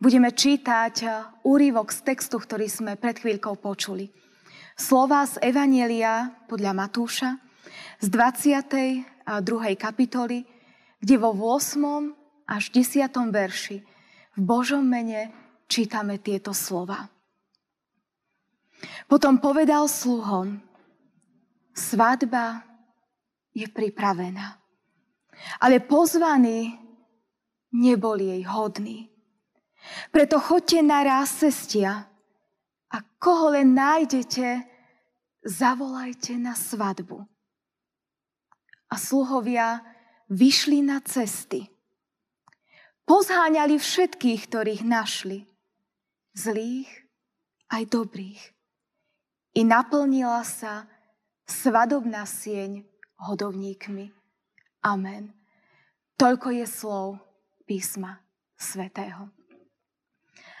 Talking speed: 75 wpm